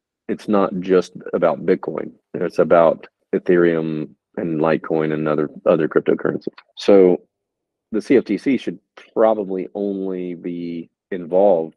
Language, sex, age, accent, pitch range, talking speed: English, male, 40-59, American, 80-95 Hz, 110 wpm